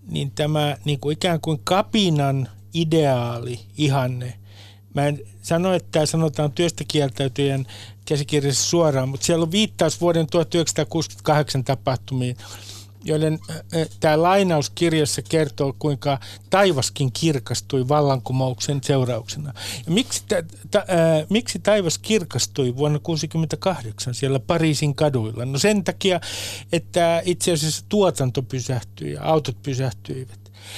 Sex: male